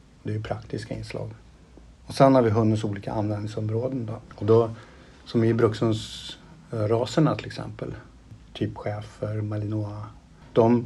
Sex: male